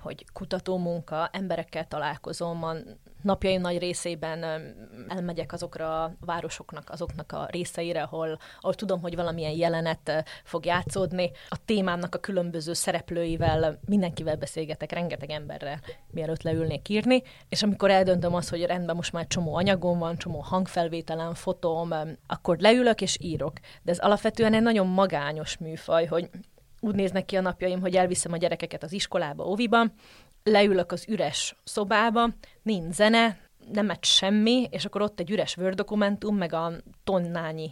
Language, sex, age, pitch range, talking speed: Hungarian, female, 20-39, 165-195 Hz, 140 wpm